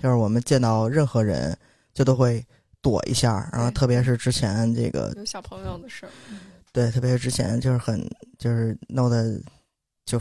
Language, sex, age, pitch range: Chinese, male, 20-39, 120-155 Hz